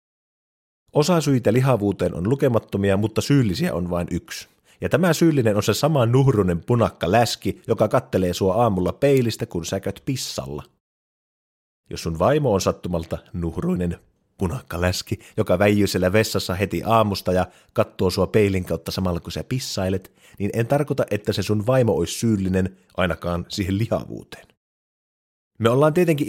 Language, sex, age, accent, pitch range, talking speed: Finnish, male, 30-49, native, 95-135 Hz, 150 wpm